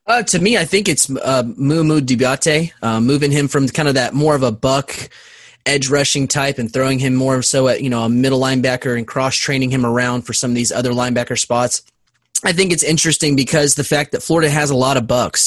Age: 20-39